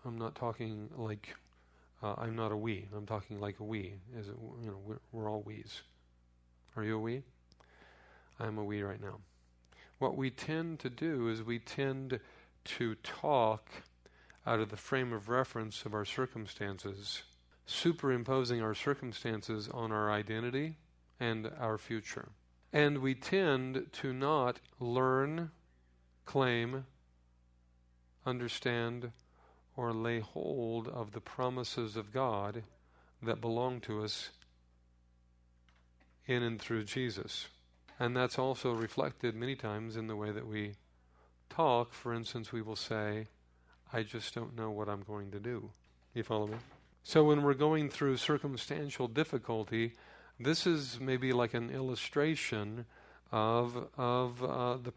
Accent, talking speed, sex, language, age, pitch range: American, 135 wpm, male, English, 50-69, 100-125 Hz